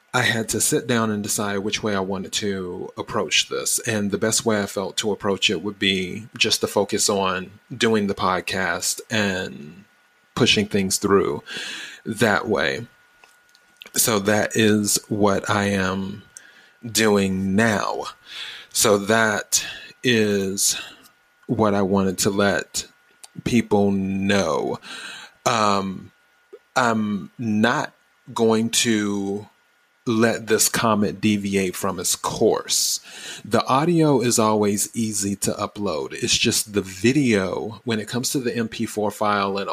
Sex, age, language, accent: male, 30-49, English, American